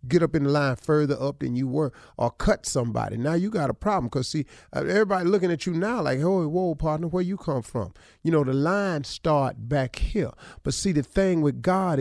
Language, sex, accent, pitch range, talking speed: English, male, American, 125-185 Hz, 230 wpm